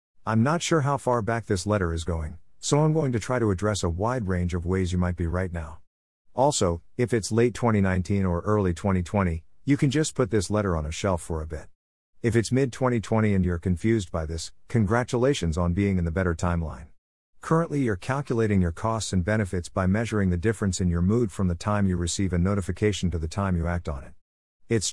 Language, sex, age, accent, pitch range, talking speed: English, male, 50-69, American, 85-115 Hz, 220 wpm